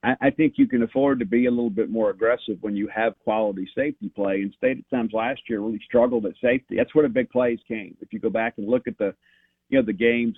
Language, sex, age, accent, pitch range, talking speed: English, male, 50-69, American, 110-130 Hz, 265 wpm